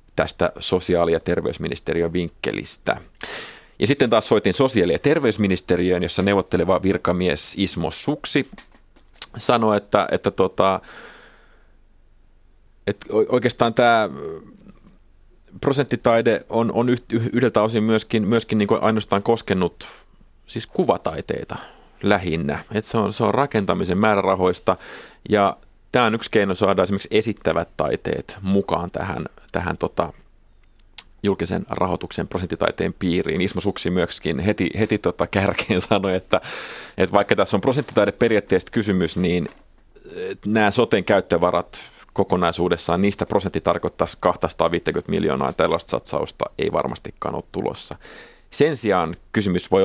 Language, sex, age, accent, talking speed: Finnish, male, 30-49, native, 110 wpm